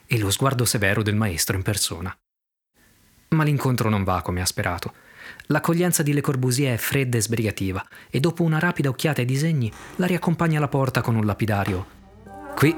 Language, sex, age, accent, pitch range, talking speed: Italian, male, 20-39, native, 100-150 Hz, 180 wpm